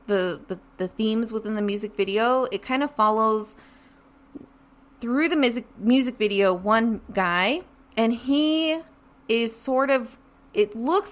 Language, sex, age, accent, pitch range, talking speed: English, female, 20-39, American, 185-235 Hz, 135 wpm